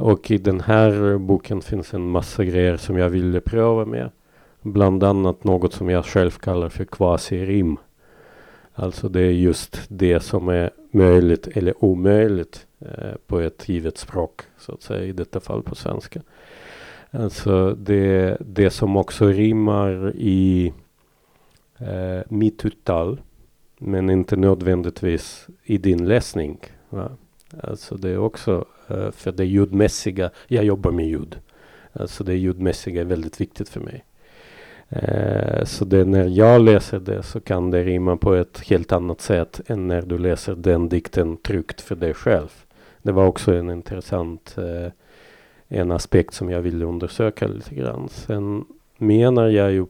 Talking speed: 150 wpm